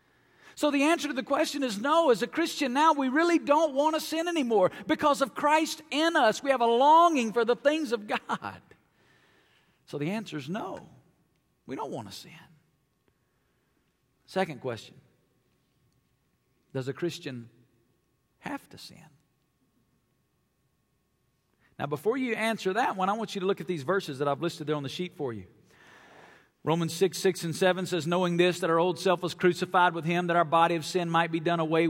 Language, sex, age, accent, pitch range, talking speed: English, male, 50-69, American, 160-215 Hz, 185 wpm